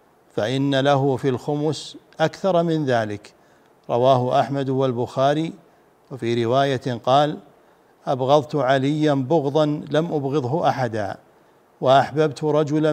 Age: 60-79